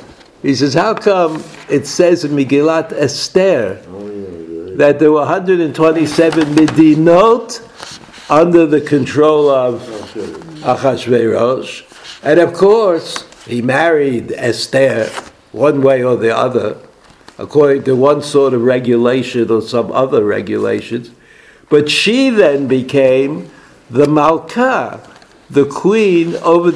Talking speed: 110 wpm